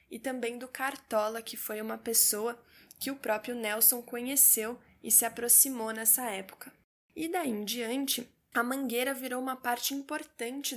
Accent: Brazilian